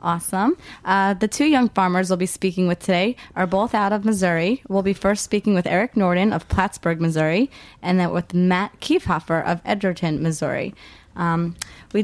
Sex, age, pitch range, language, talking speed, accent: female, 20-39, 165-195 Hz, English, 180 wpm, American